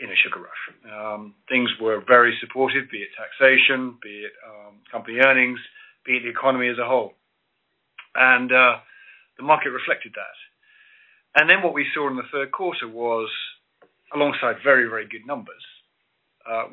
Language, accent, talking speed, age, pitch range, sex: English, British, 165 wpm, 40-59, 115-180 Hz, male